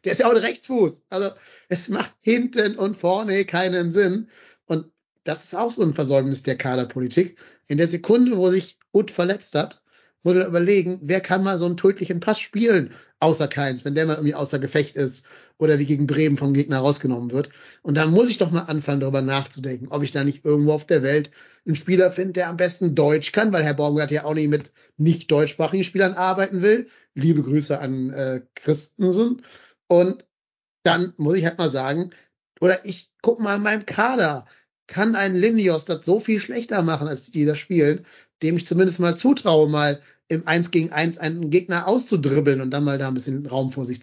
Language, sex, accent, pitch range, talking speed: German, male, German, 145-185 Hz, 200 wpm